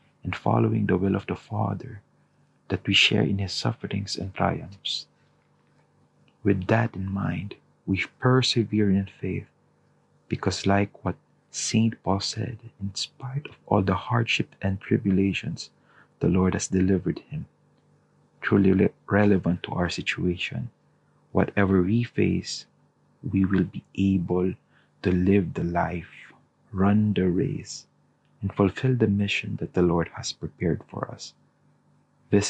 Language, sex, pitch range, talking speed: English, male, 90-110 Hz, 135 wpm